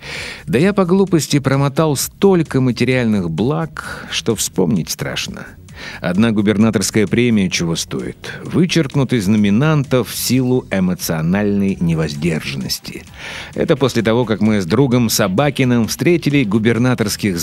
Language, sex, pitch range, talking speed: Russian, male, 105-155 Hz, 115 wpm